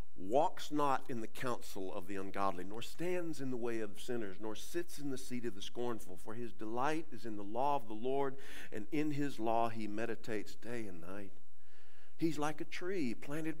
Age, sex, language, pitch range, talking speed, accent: 50-69, male, English, 100-160 Hz, 205 wpm, American